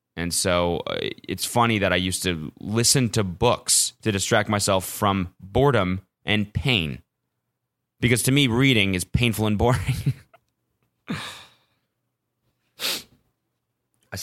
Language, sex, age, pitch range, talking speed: English, male, 20-39, 95-130 Hz, 115 wpm